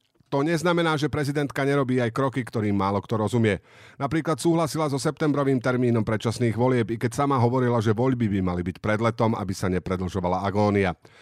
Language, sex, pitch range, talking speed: Slovak, male, 105-140 Hz, 175 wpm